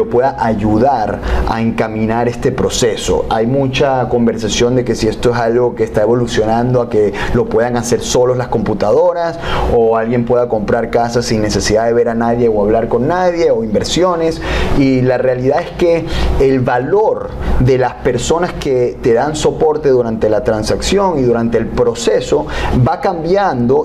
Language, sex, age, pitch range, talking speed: English, male, 30-49, 120-165 Hz, 165 wpm